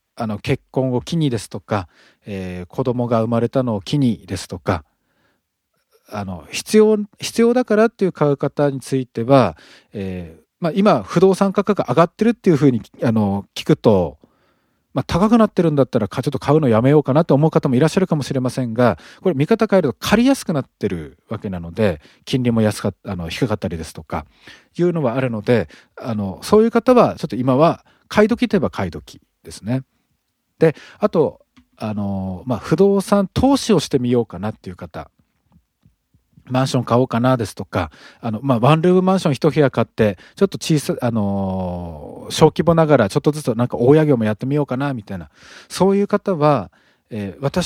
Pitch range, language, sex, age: 105-165 Hz, Japanese, male, 40-59